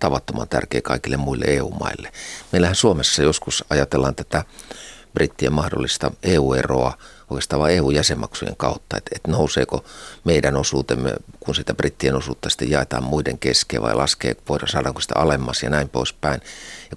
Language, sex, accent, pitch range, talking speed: Finnish, male, native, 65-75 Hz, 140 wpm